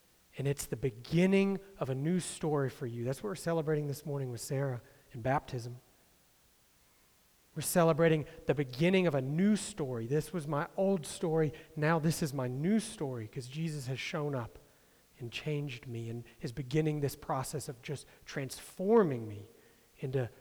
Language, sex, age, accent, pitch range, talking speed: English, male, 40-59, American, 125-160 Hz, 170 wpm